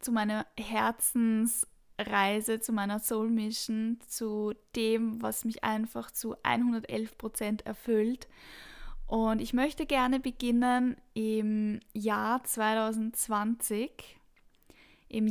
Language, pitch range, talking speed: German, 220-250 Hz, 95 wpm